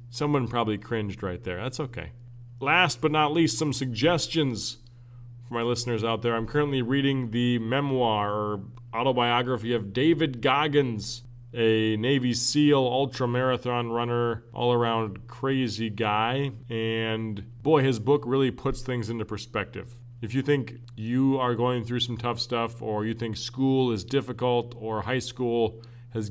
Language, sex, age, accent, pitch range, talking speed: English, male, 30-49, American, 115-130 Hz, 150 wpm